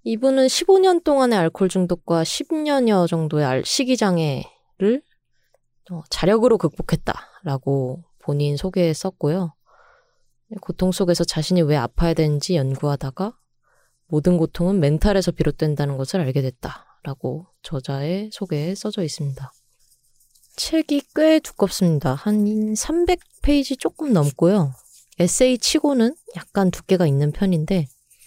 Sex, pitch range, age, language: female, 145-215 Hz, 20-39, Korean